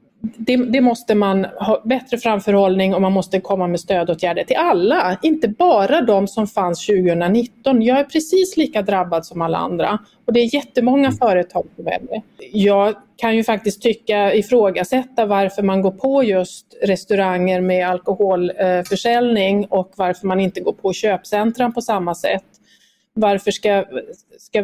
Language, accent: Swedish, native